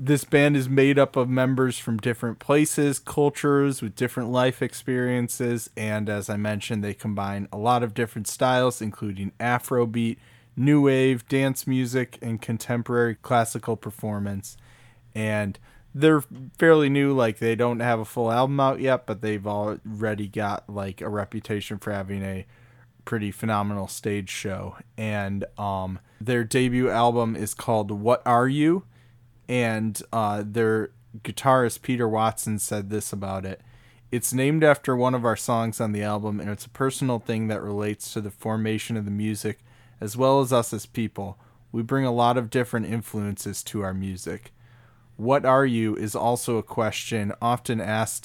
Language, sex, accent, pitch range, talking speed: English, male, American, 105-125 Hz, 165 wpm